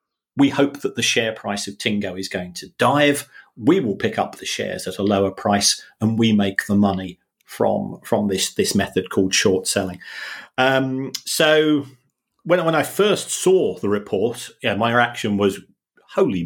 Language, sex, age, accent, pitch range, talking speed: English, male, 40-59, British, 105-130 Hz, 180 wpm